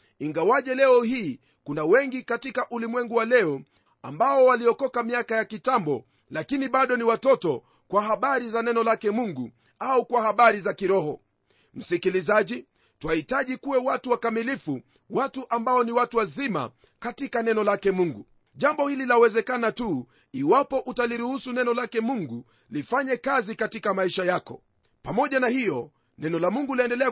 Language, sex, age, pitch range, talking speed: Swahili, male, 40-59, 215-260 Hz, 140 wpm